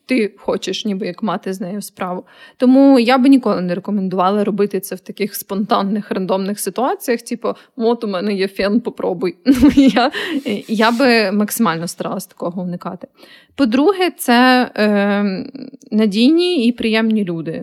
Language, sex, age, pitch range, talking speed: Ukrainian, female, 20-39, 195-250 Hz, 145 wpm